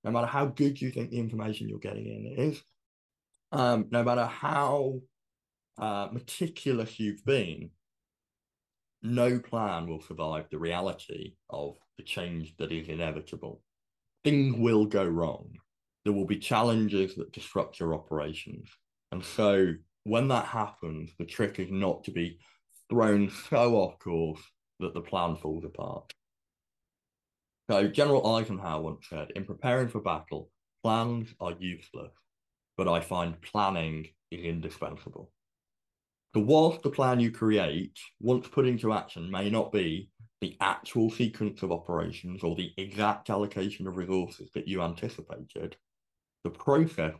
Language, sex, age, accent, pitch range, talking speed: English, male, 20-39, British, 85-120 Hz, 140 wpm